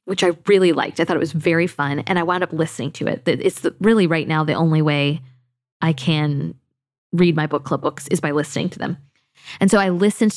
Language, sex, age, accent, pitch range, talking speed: English, female, 20-39, American, 150-195 Hz, 230 wpm